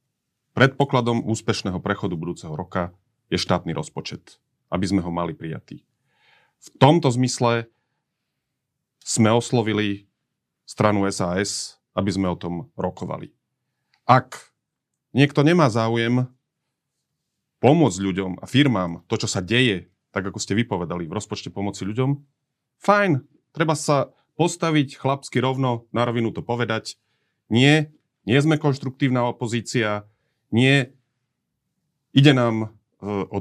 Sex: male